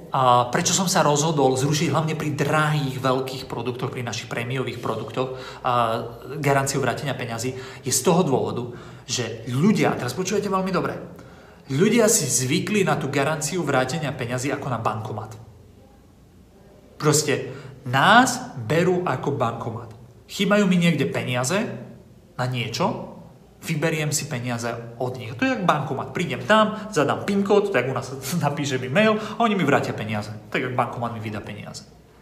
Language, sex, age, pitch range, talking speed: Slovak, male, 40-59, 130-180 Hz, 150 wpm